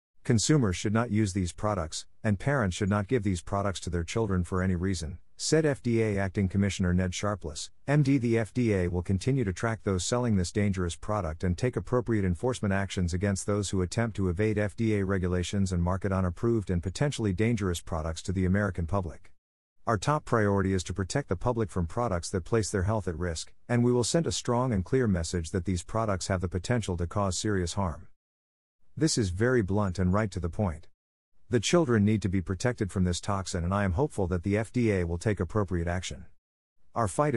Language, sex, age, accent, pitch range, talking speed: English, male, 50-69, American, 90-115 Hz, 205 wpm